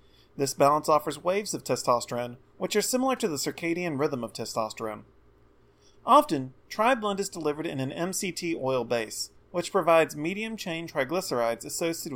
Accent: American